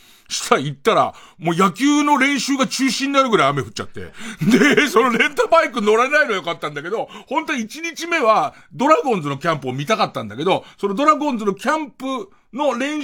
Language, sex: Japanese, male